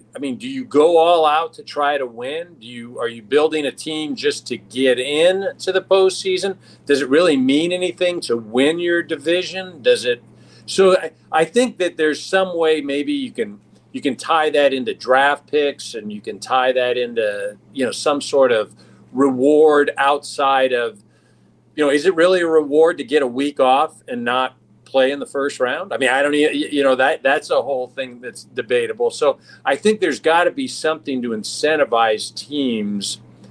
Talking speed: 200 wpm